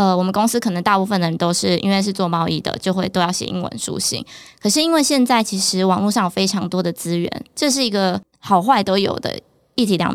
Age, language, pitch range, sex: 20-39, Chinese, 175-210 Hz, female